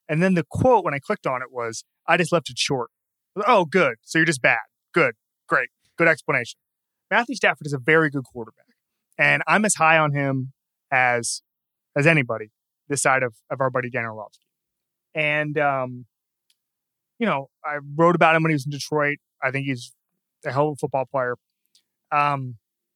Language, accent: English, American